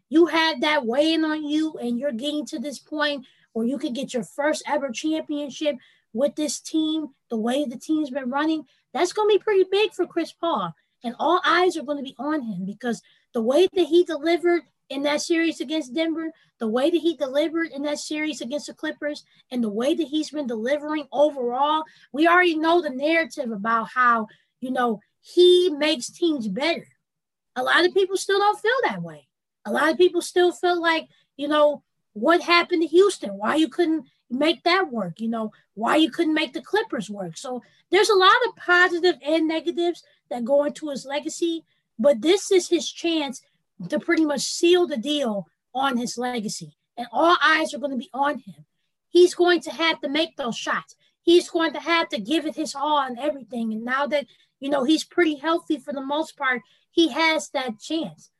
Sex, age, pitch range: female, 20-39, 255-330 Hz